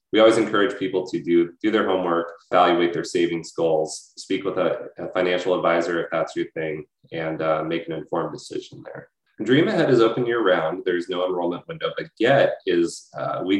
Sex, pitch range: male, 80-110 Hz